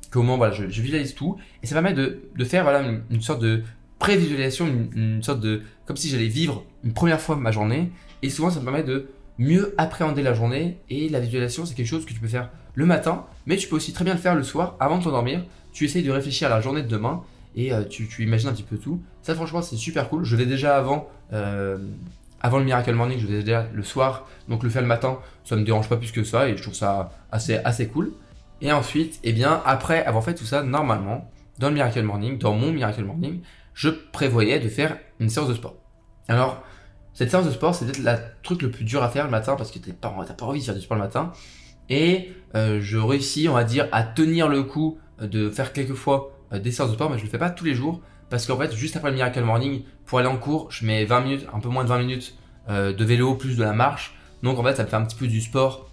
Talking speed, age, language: 265 wpm, 20-39, French